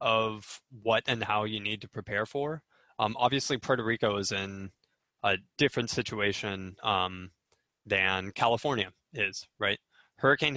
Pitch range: 100-125 Hz